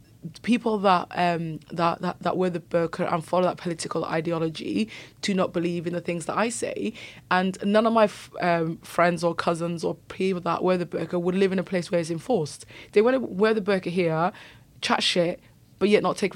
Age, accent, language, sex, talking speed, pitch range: 20-39, British, English, female, 210 wpm, 170-190 Hz